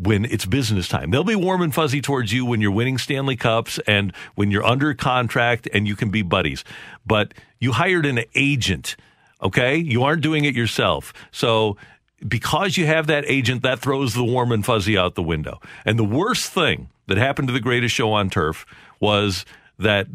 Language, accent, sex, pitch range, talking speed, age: English, American, male, 105-140 Hz, 195 wpm, 50-69